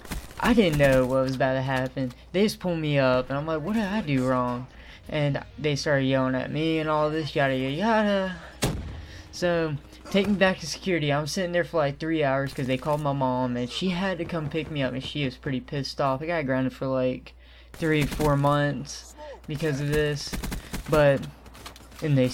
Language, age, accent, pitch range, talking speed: English, 10-29, American, 130-170 Hz, 215 wpm